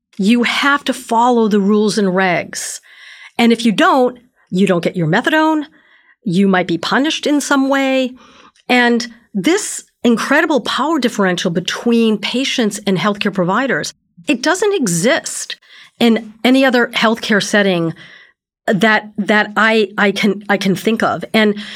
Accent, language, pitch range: American, English, 185-235 Hz